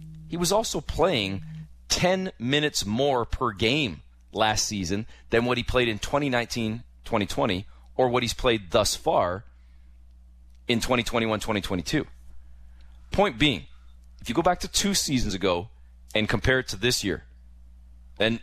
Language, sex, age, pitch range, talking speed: English, male, 30-49, 90-140 Hz, 135 wpm